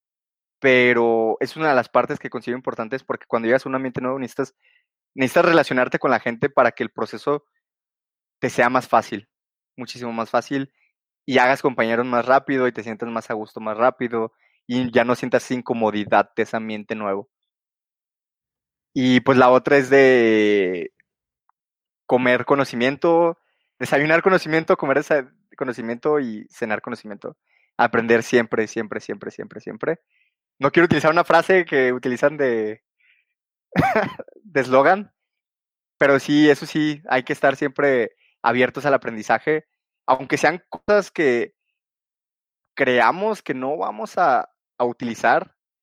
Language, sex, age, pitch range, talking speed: Spanish, male, 20-39, 115-150 Hz, 140 wpm